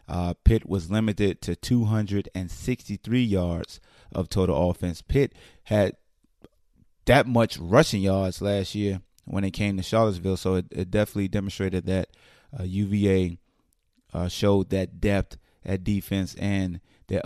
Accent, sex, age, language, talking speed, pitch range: American, male, 30-49, English, 135 wpm, 90-105 Hz